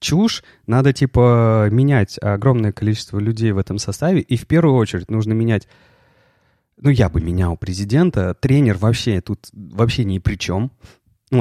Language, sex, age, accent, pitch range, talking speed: Russian, male, 30-49, native, 100-130 Hz, 155 wpm